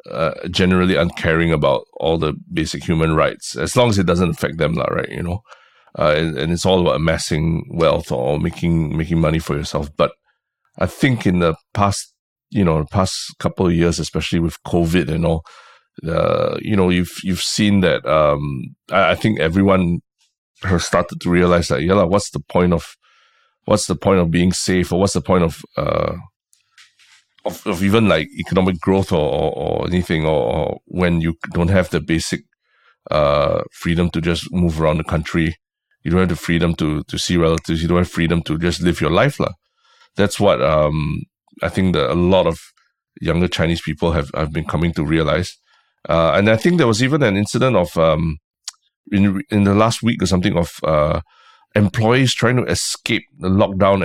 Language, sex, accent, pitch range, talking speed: English, male, Malaysian, 80-95 Hz, 190 wpm